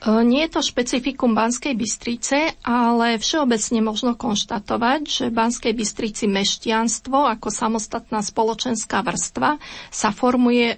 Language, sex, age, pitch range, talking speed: Slovak, female, 30-49, 220-255 Hz, 110 wpm